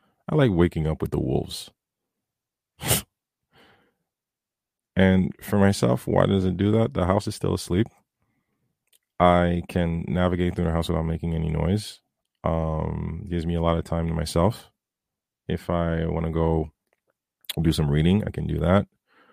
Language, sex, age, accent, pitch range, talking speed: English, male, 30-49, American, 80-95 Hz, 160 wpm